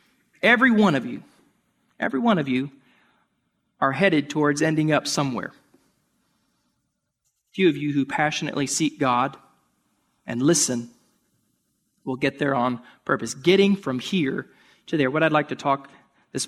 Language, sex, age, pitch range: English, male, 30-49, 135-190 Hz